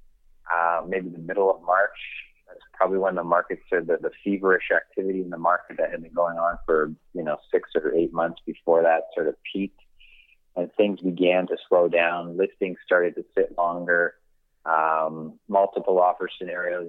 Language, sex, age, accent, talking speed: English, male, 30-49, American, 185 wpm